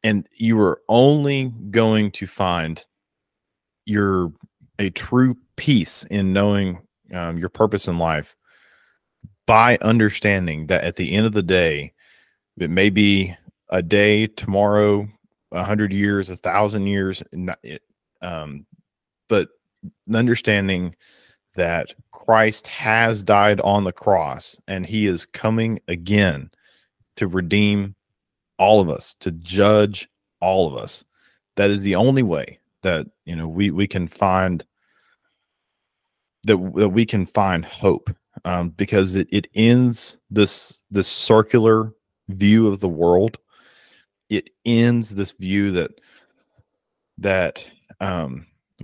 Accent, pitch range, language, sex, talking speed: American, 90-105 Hz, English, male, 125 wpm